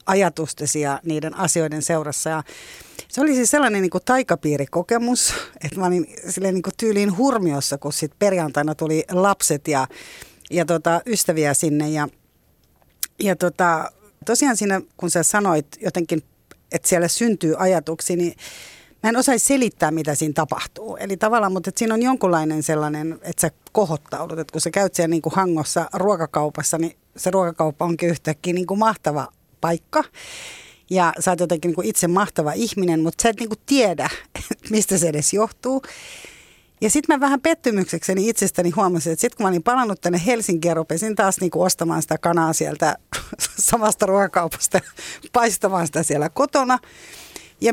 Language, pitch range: Finnish, 160-225 Hz